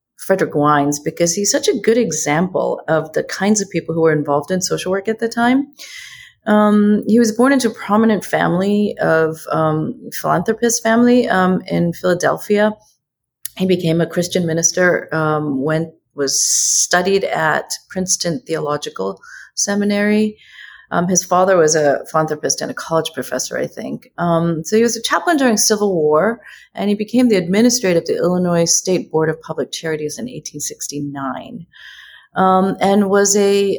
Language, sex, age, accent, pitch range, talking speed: English, female, 30-49, Canadian, 160-215 Hz, 155 wpm